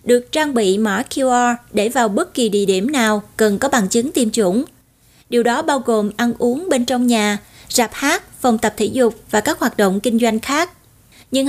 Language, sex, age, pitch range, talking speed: Vietnamese, female, 20-39, 215-270 Hz, 215 wpm